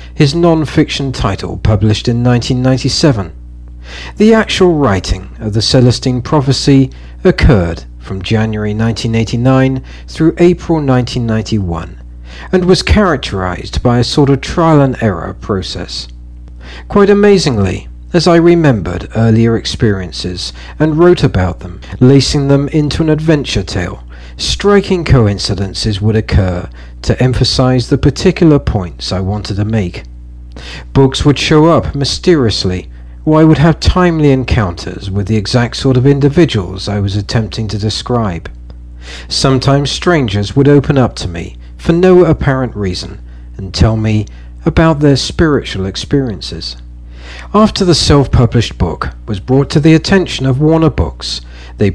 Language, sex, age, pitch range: English, male, 50-69, 90-140 Hz